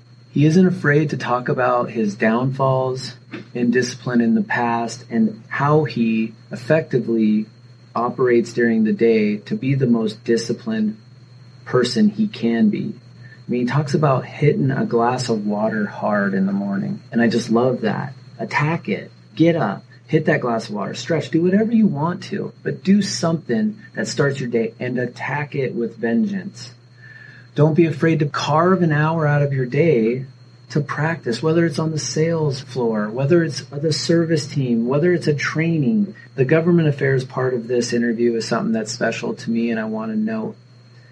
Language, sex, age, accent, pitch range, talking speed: English, male, 30-49, American, 120-160 Hz, 180 wpm